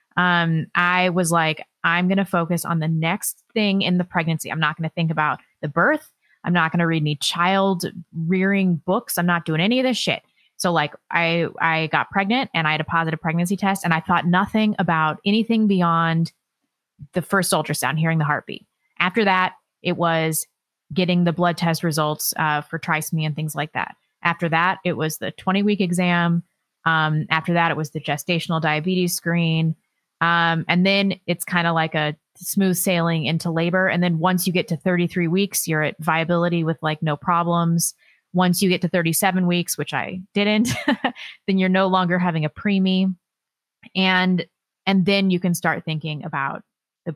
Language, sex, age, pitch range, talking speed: English, female, 20-39, 165-185 Hz, 190 wpm